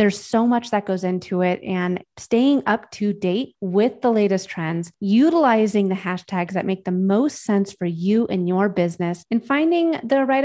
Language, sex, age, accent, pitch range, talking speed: English, female, 30-49, American, 190-230 Hz, 190 wpm